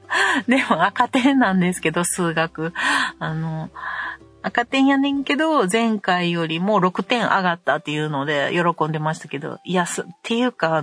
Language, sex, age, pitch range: Japanese, female, 40-59, 170-230 Hz